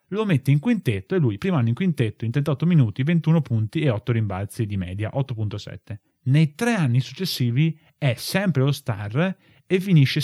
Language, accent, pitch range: Italian, native, 115-155 Hz